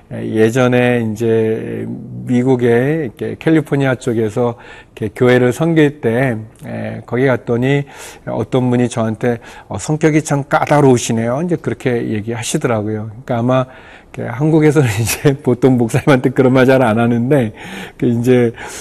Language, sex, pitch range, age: Korean, male, 115-140 Hz, 40-59